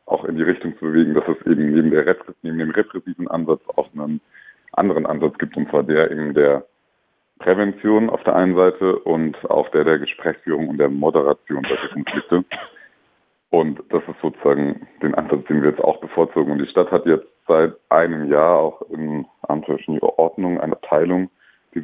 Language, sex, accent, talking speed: German, male, German, 185 wpm